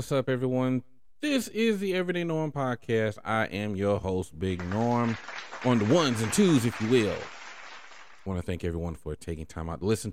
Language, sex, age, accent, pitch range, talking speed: English, male, 40-59, American, 90-125 Hz, 200 wpm